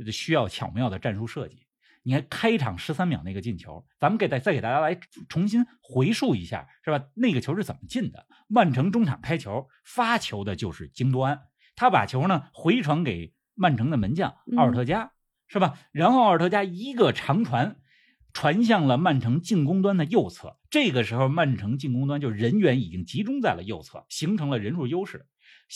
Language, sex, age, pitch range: Chinese, male, 50-69, 125-205 Hz